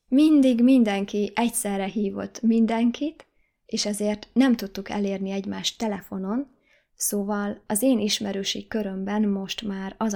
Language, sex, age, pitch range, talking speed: Hungarian, female, 20-39, 195-225 Hz, 120 wpm